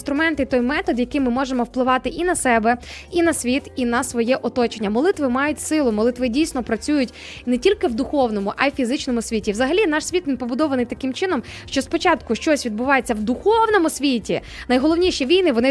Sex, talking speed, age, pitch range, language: female, 185 wpm, 20-39, 245-305 Hz, Ukrainian